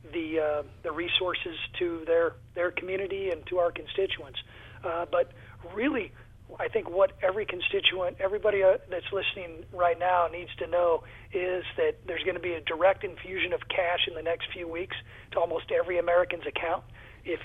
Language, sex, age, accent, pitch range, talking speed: English, male, 40-59, American, 165-190 Hz, 175 wpm